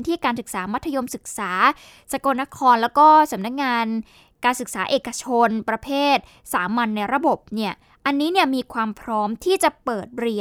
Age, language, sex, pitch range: 10-29, Thai, female, 220-280 Hz